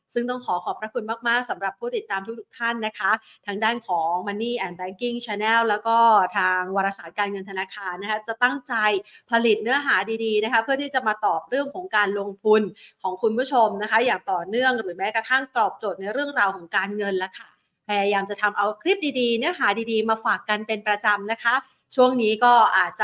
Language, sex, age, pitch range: Thai, female, 30-49, 210-270 Hz